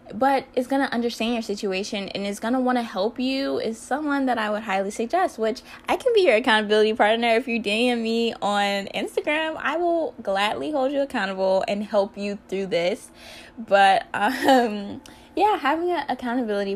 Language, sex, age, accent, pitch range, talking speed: English, female, 10-29, American, 200-260 Hz, 185 wpm